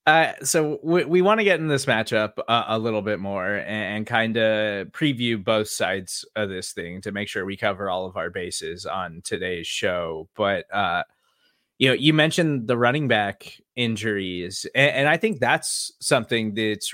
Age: 20-39